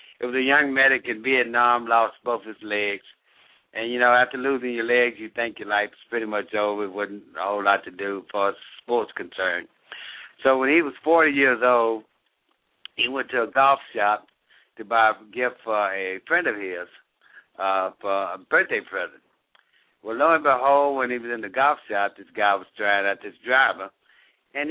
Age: 60-79